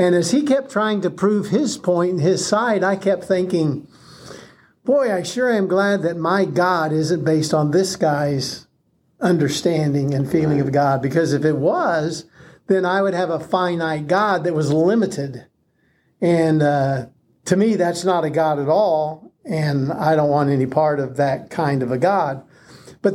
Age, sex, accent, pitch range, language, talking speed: 50-69, male, American, 155-195 Hz, English, 180 wpm